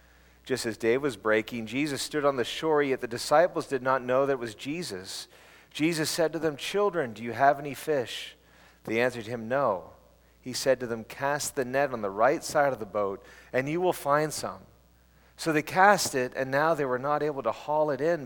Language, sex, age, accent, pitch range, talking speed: English, male, 40-59, American, 110-145 Hz, 220 wpm